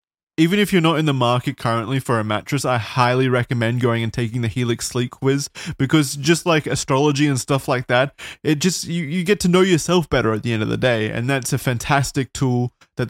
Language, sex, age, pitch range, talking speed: English, male, 20-39, 115-135 Hz, 230 wpm